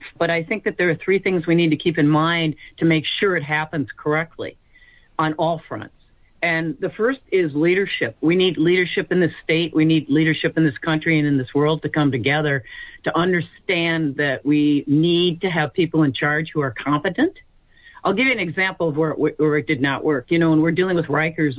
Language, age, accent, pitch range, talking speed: English, 50-69, American, 145-180 Hz, 220 wpm